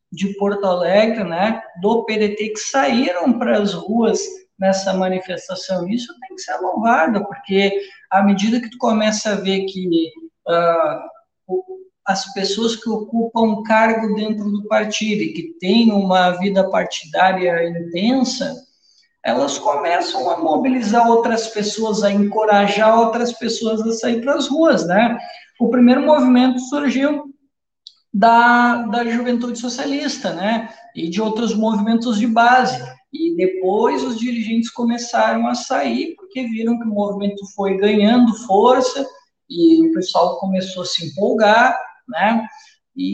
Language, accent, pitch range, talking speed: Portuguese, Brazilian, 200-250 Hz, 140 wpm